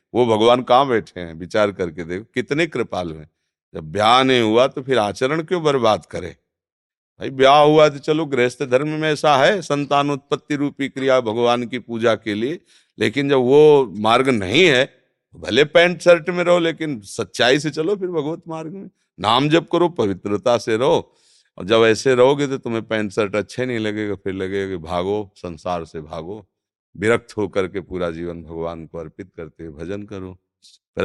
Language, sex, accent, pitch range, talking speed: Hindi, male, native, 100-140 Hz, 185 wpm